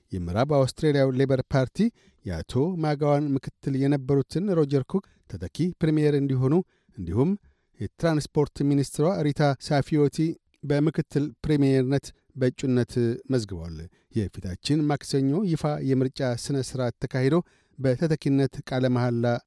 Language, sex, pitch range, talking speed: Amharic, male, 130-155 Hz, 100 wpm